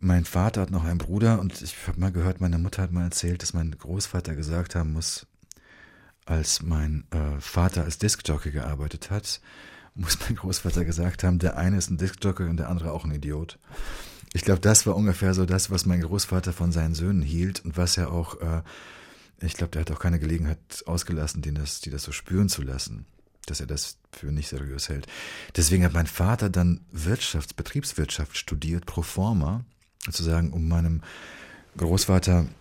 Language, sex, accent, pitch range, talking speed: German, male, German, 80-90 Hz, 190 wpm